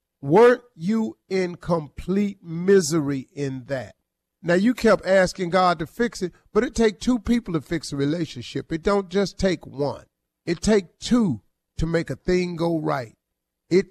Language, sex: English, male